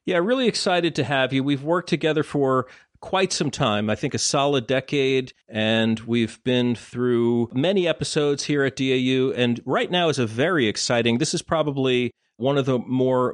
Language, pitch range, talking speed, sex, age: English, 115-140 Hz, 185 wpm, male, 40-59